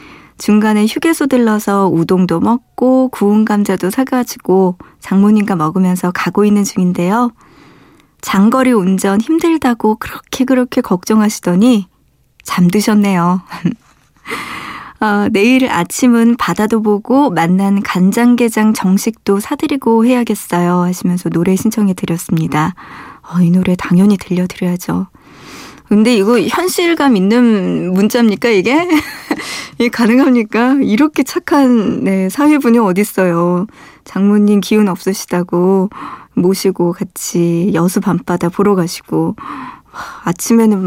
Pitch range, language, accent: 185-235 Hz, Korean, native